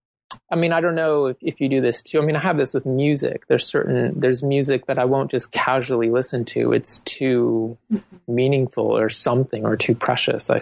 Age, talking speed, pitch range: 20-39, 215 wpm, 115-135 Hz